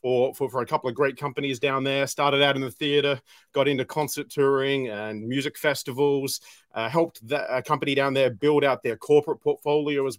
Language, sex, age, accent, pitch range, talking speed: English, male, 30-49, Australian, 130-150 Hz, 205 wpm